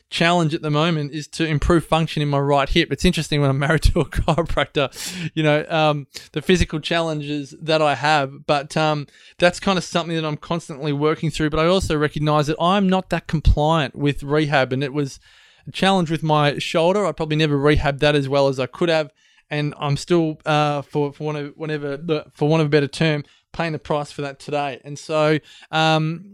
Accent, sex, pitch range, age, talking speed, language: Australian, male, 140-160 Hz, 20-39, 210 wpm, English